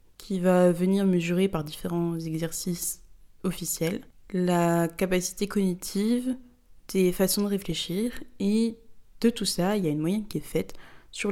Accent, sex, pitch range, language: French, female, 165-205 Hz, French